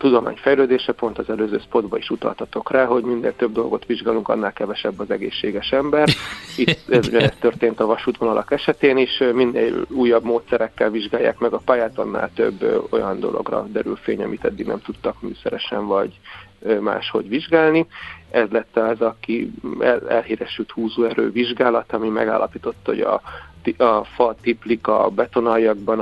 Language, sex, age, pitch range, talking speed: Hungarian, male, 40-59, 110-130 Hz, 150 wpm